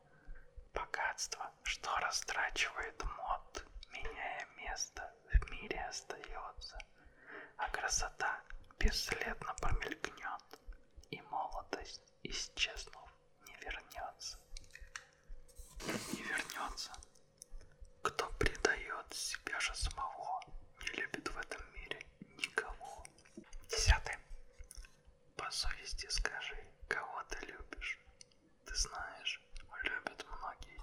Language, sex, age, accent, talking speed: Russian, male, 20-39, native, 80 wpm